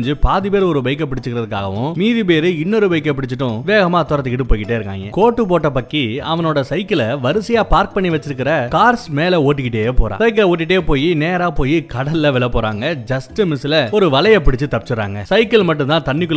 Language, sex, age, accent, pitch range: Tamil, male, 30-49, native, 135-185 Hz